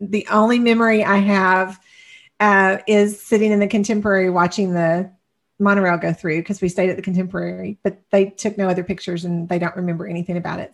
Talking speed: 195 wpm